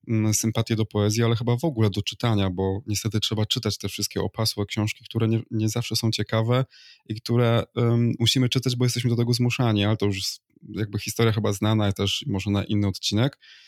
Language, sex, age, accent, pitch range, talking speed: Polish, male, 20-39, native, 105-120 Hz, 205 wpm